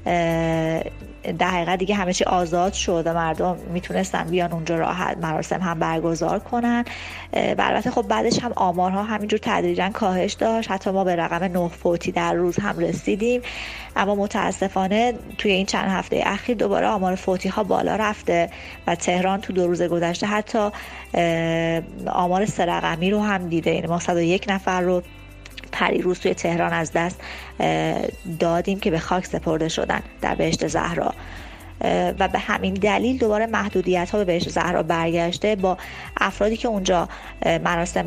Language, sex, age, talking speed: Persian, female, 30-49, 150 wpm